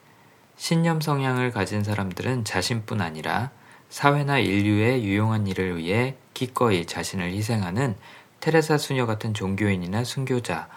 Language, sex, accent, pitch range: Korean, male, native, 95-125 Hz